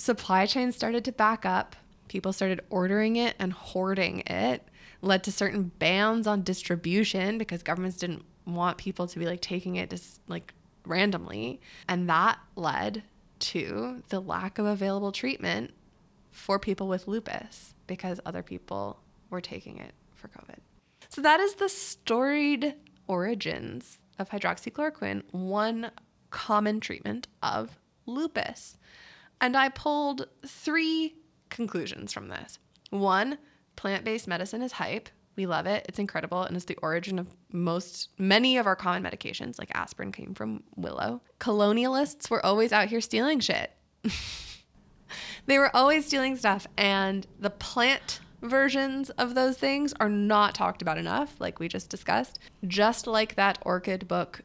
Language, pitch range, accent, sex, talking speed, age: English, 185-245 Hz, American, female, 145 wpm, 20-39